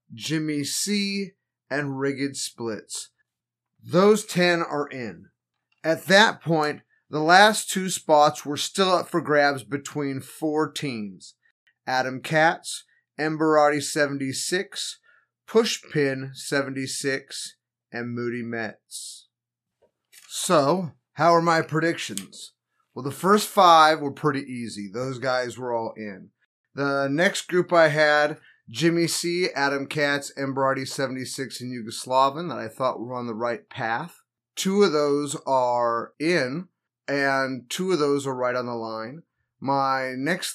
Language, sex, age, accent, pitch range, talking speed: English, male, 30-49, American, 125-155 Hz, 130 wpm